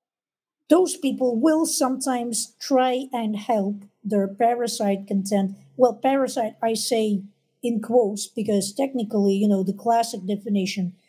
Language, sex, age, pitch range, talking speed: English, female, 50-69, 200-245 Hz, 125 wpm